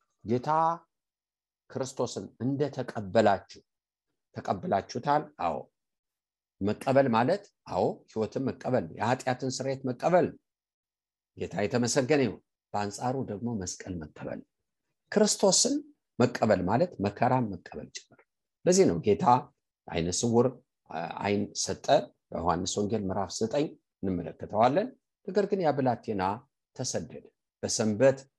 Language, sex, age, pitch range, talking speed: English, male, 50-69, 100-140 Hz, 115 wpm